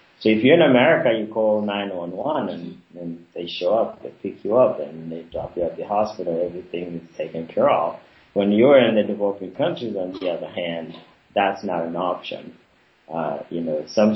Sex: male